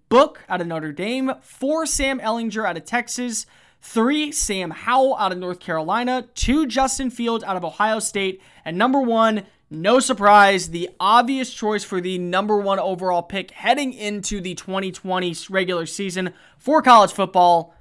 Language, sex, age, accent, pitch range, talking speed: English, male, 20-39, American, 185-235 Hz, 160 wpm